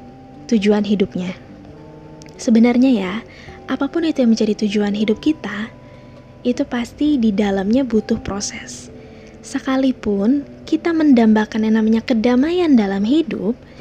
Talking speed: 110 wpm